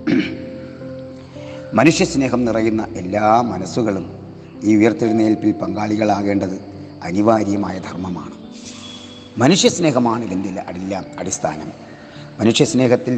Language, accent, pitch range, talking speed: Malayalam, native, 100-120 Hz, 65 wpm